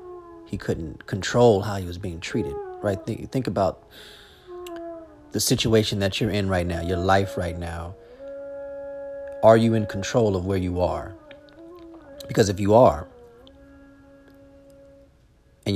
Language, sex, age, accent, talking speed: English, male, 40-59, American, 135 wpm